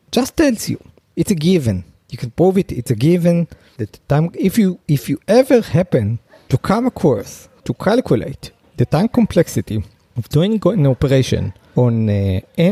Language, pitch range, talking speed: English, 115-180 Hz, 160 wpm